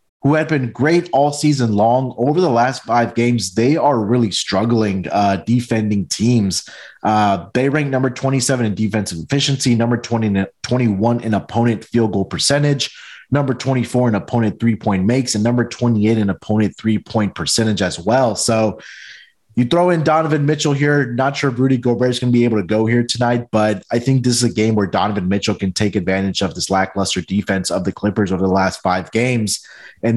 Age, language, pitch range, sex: 20-39, English, 105-125 Hz, male